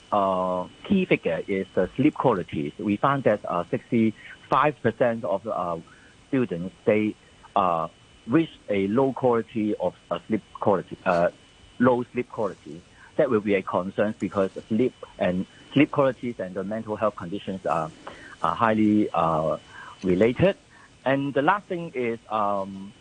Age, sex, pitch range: 50-69, male, 100-135 Hz